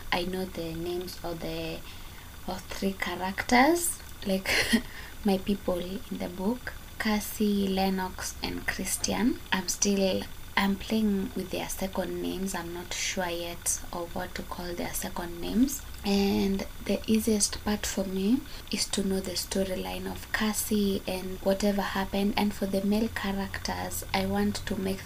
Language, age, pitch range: English, 20-39, 180-205 Hz